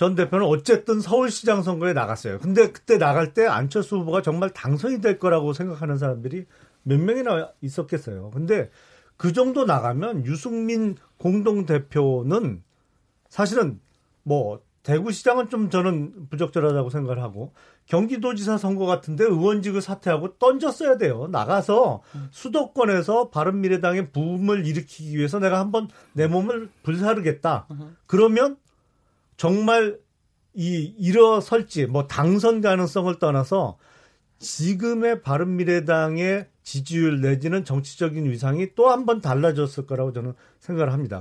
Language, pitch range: Korean, 150-215 Hz